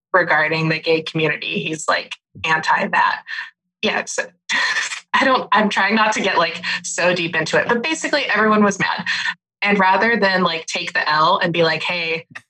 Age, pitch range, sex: 20-39, 165-215 Hz, female